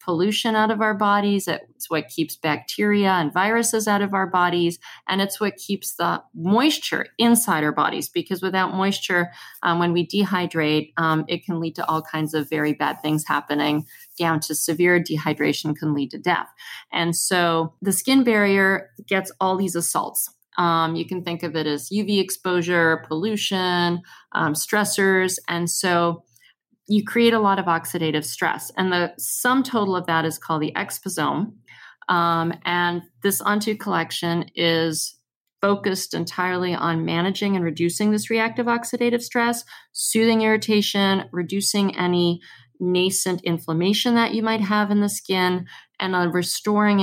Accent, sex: American, female